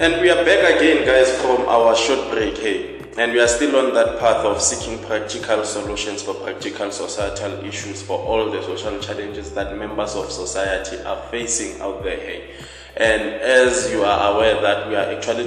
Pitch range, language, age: 100-120 Hz, English, 20-39